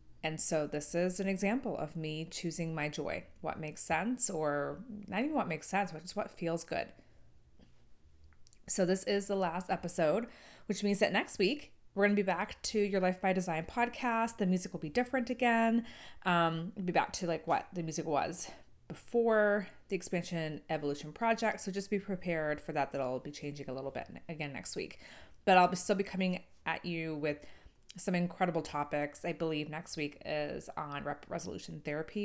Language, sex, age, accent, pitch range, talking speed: English, female, 20-39, American, 150-195 Hz, 190 wpm